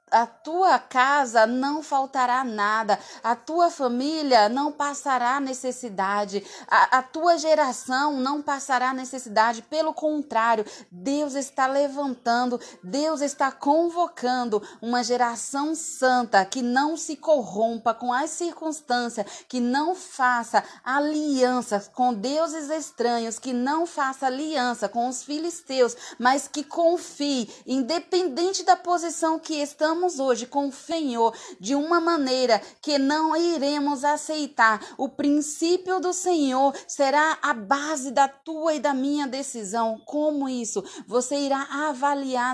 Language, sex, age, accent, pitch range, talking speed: Portuguese, female, 30-49, Brazilian, 235-290 Hz, 125 wpm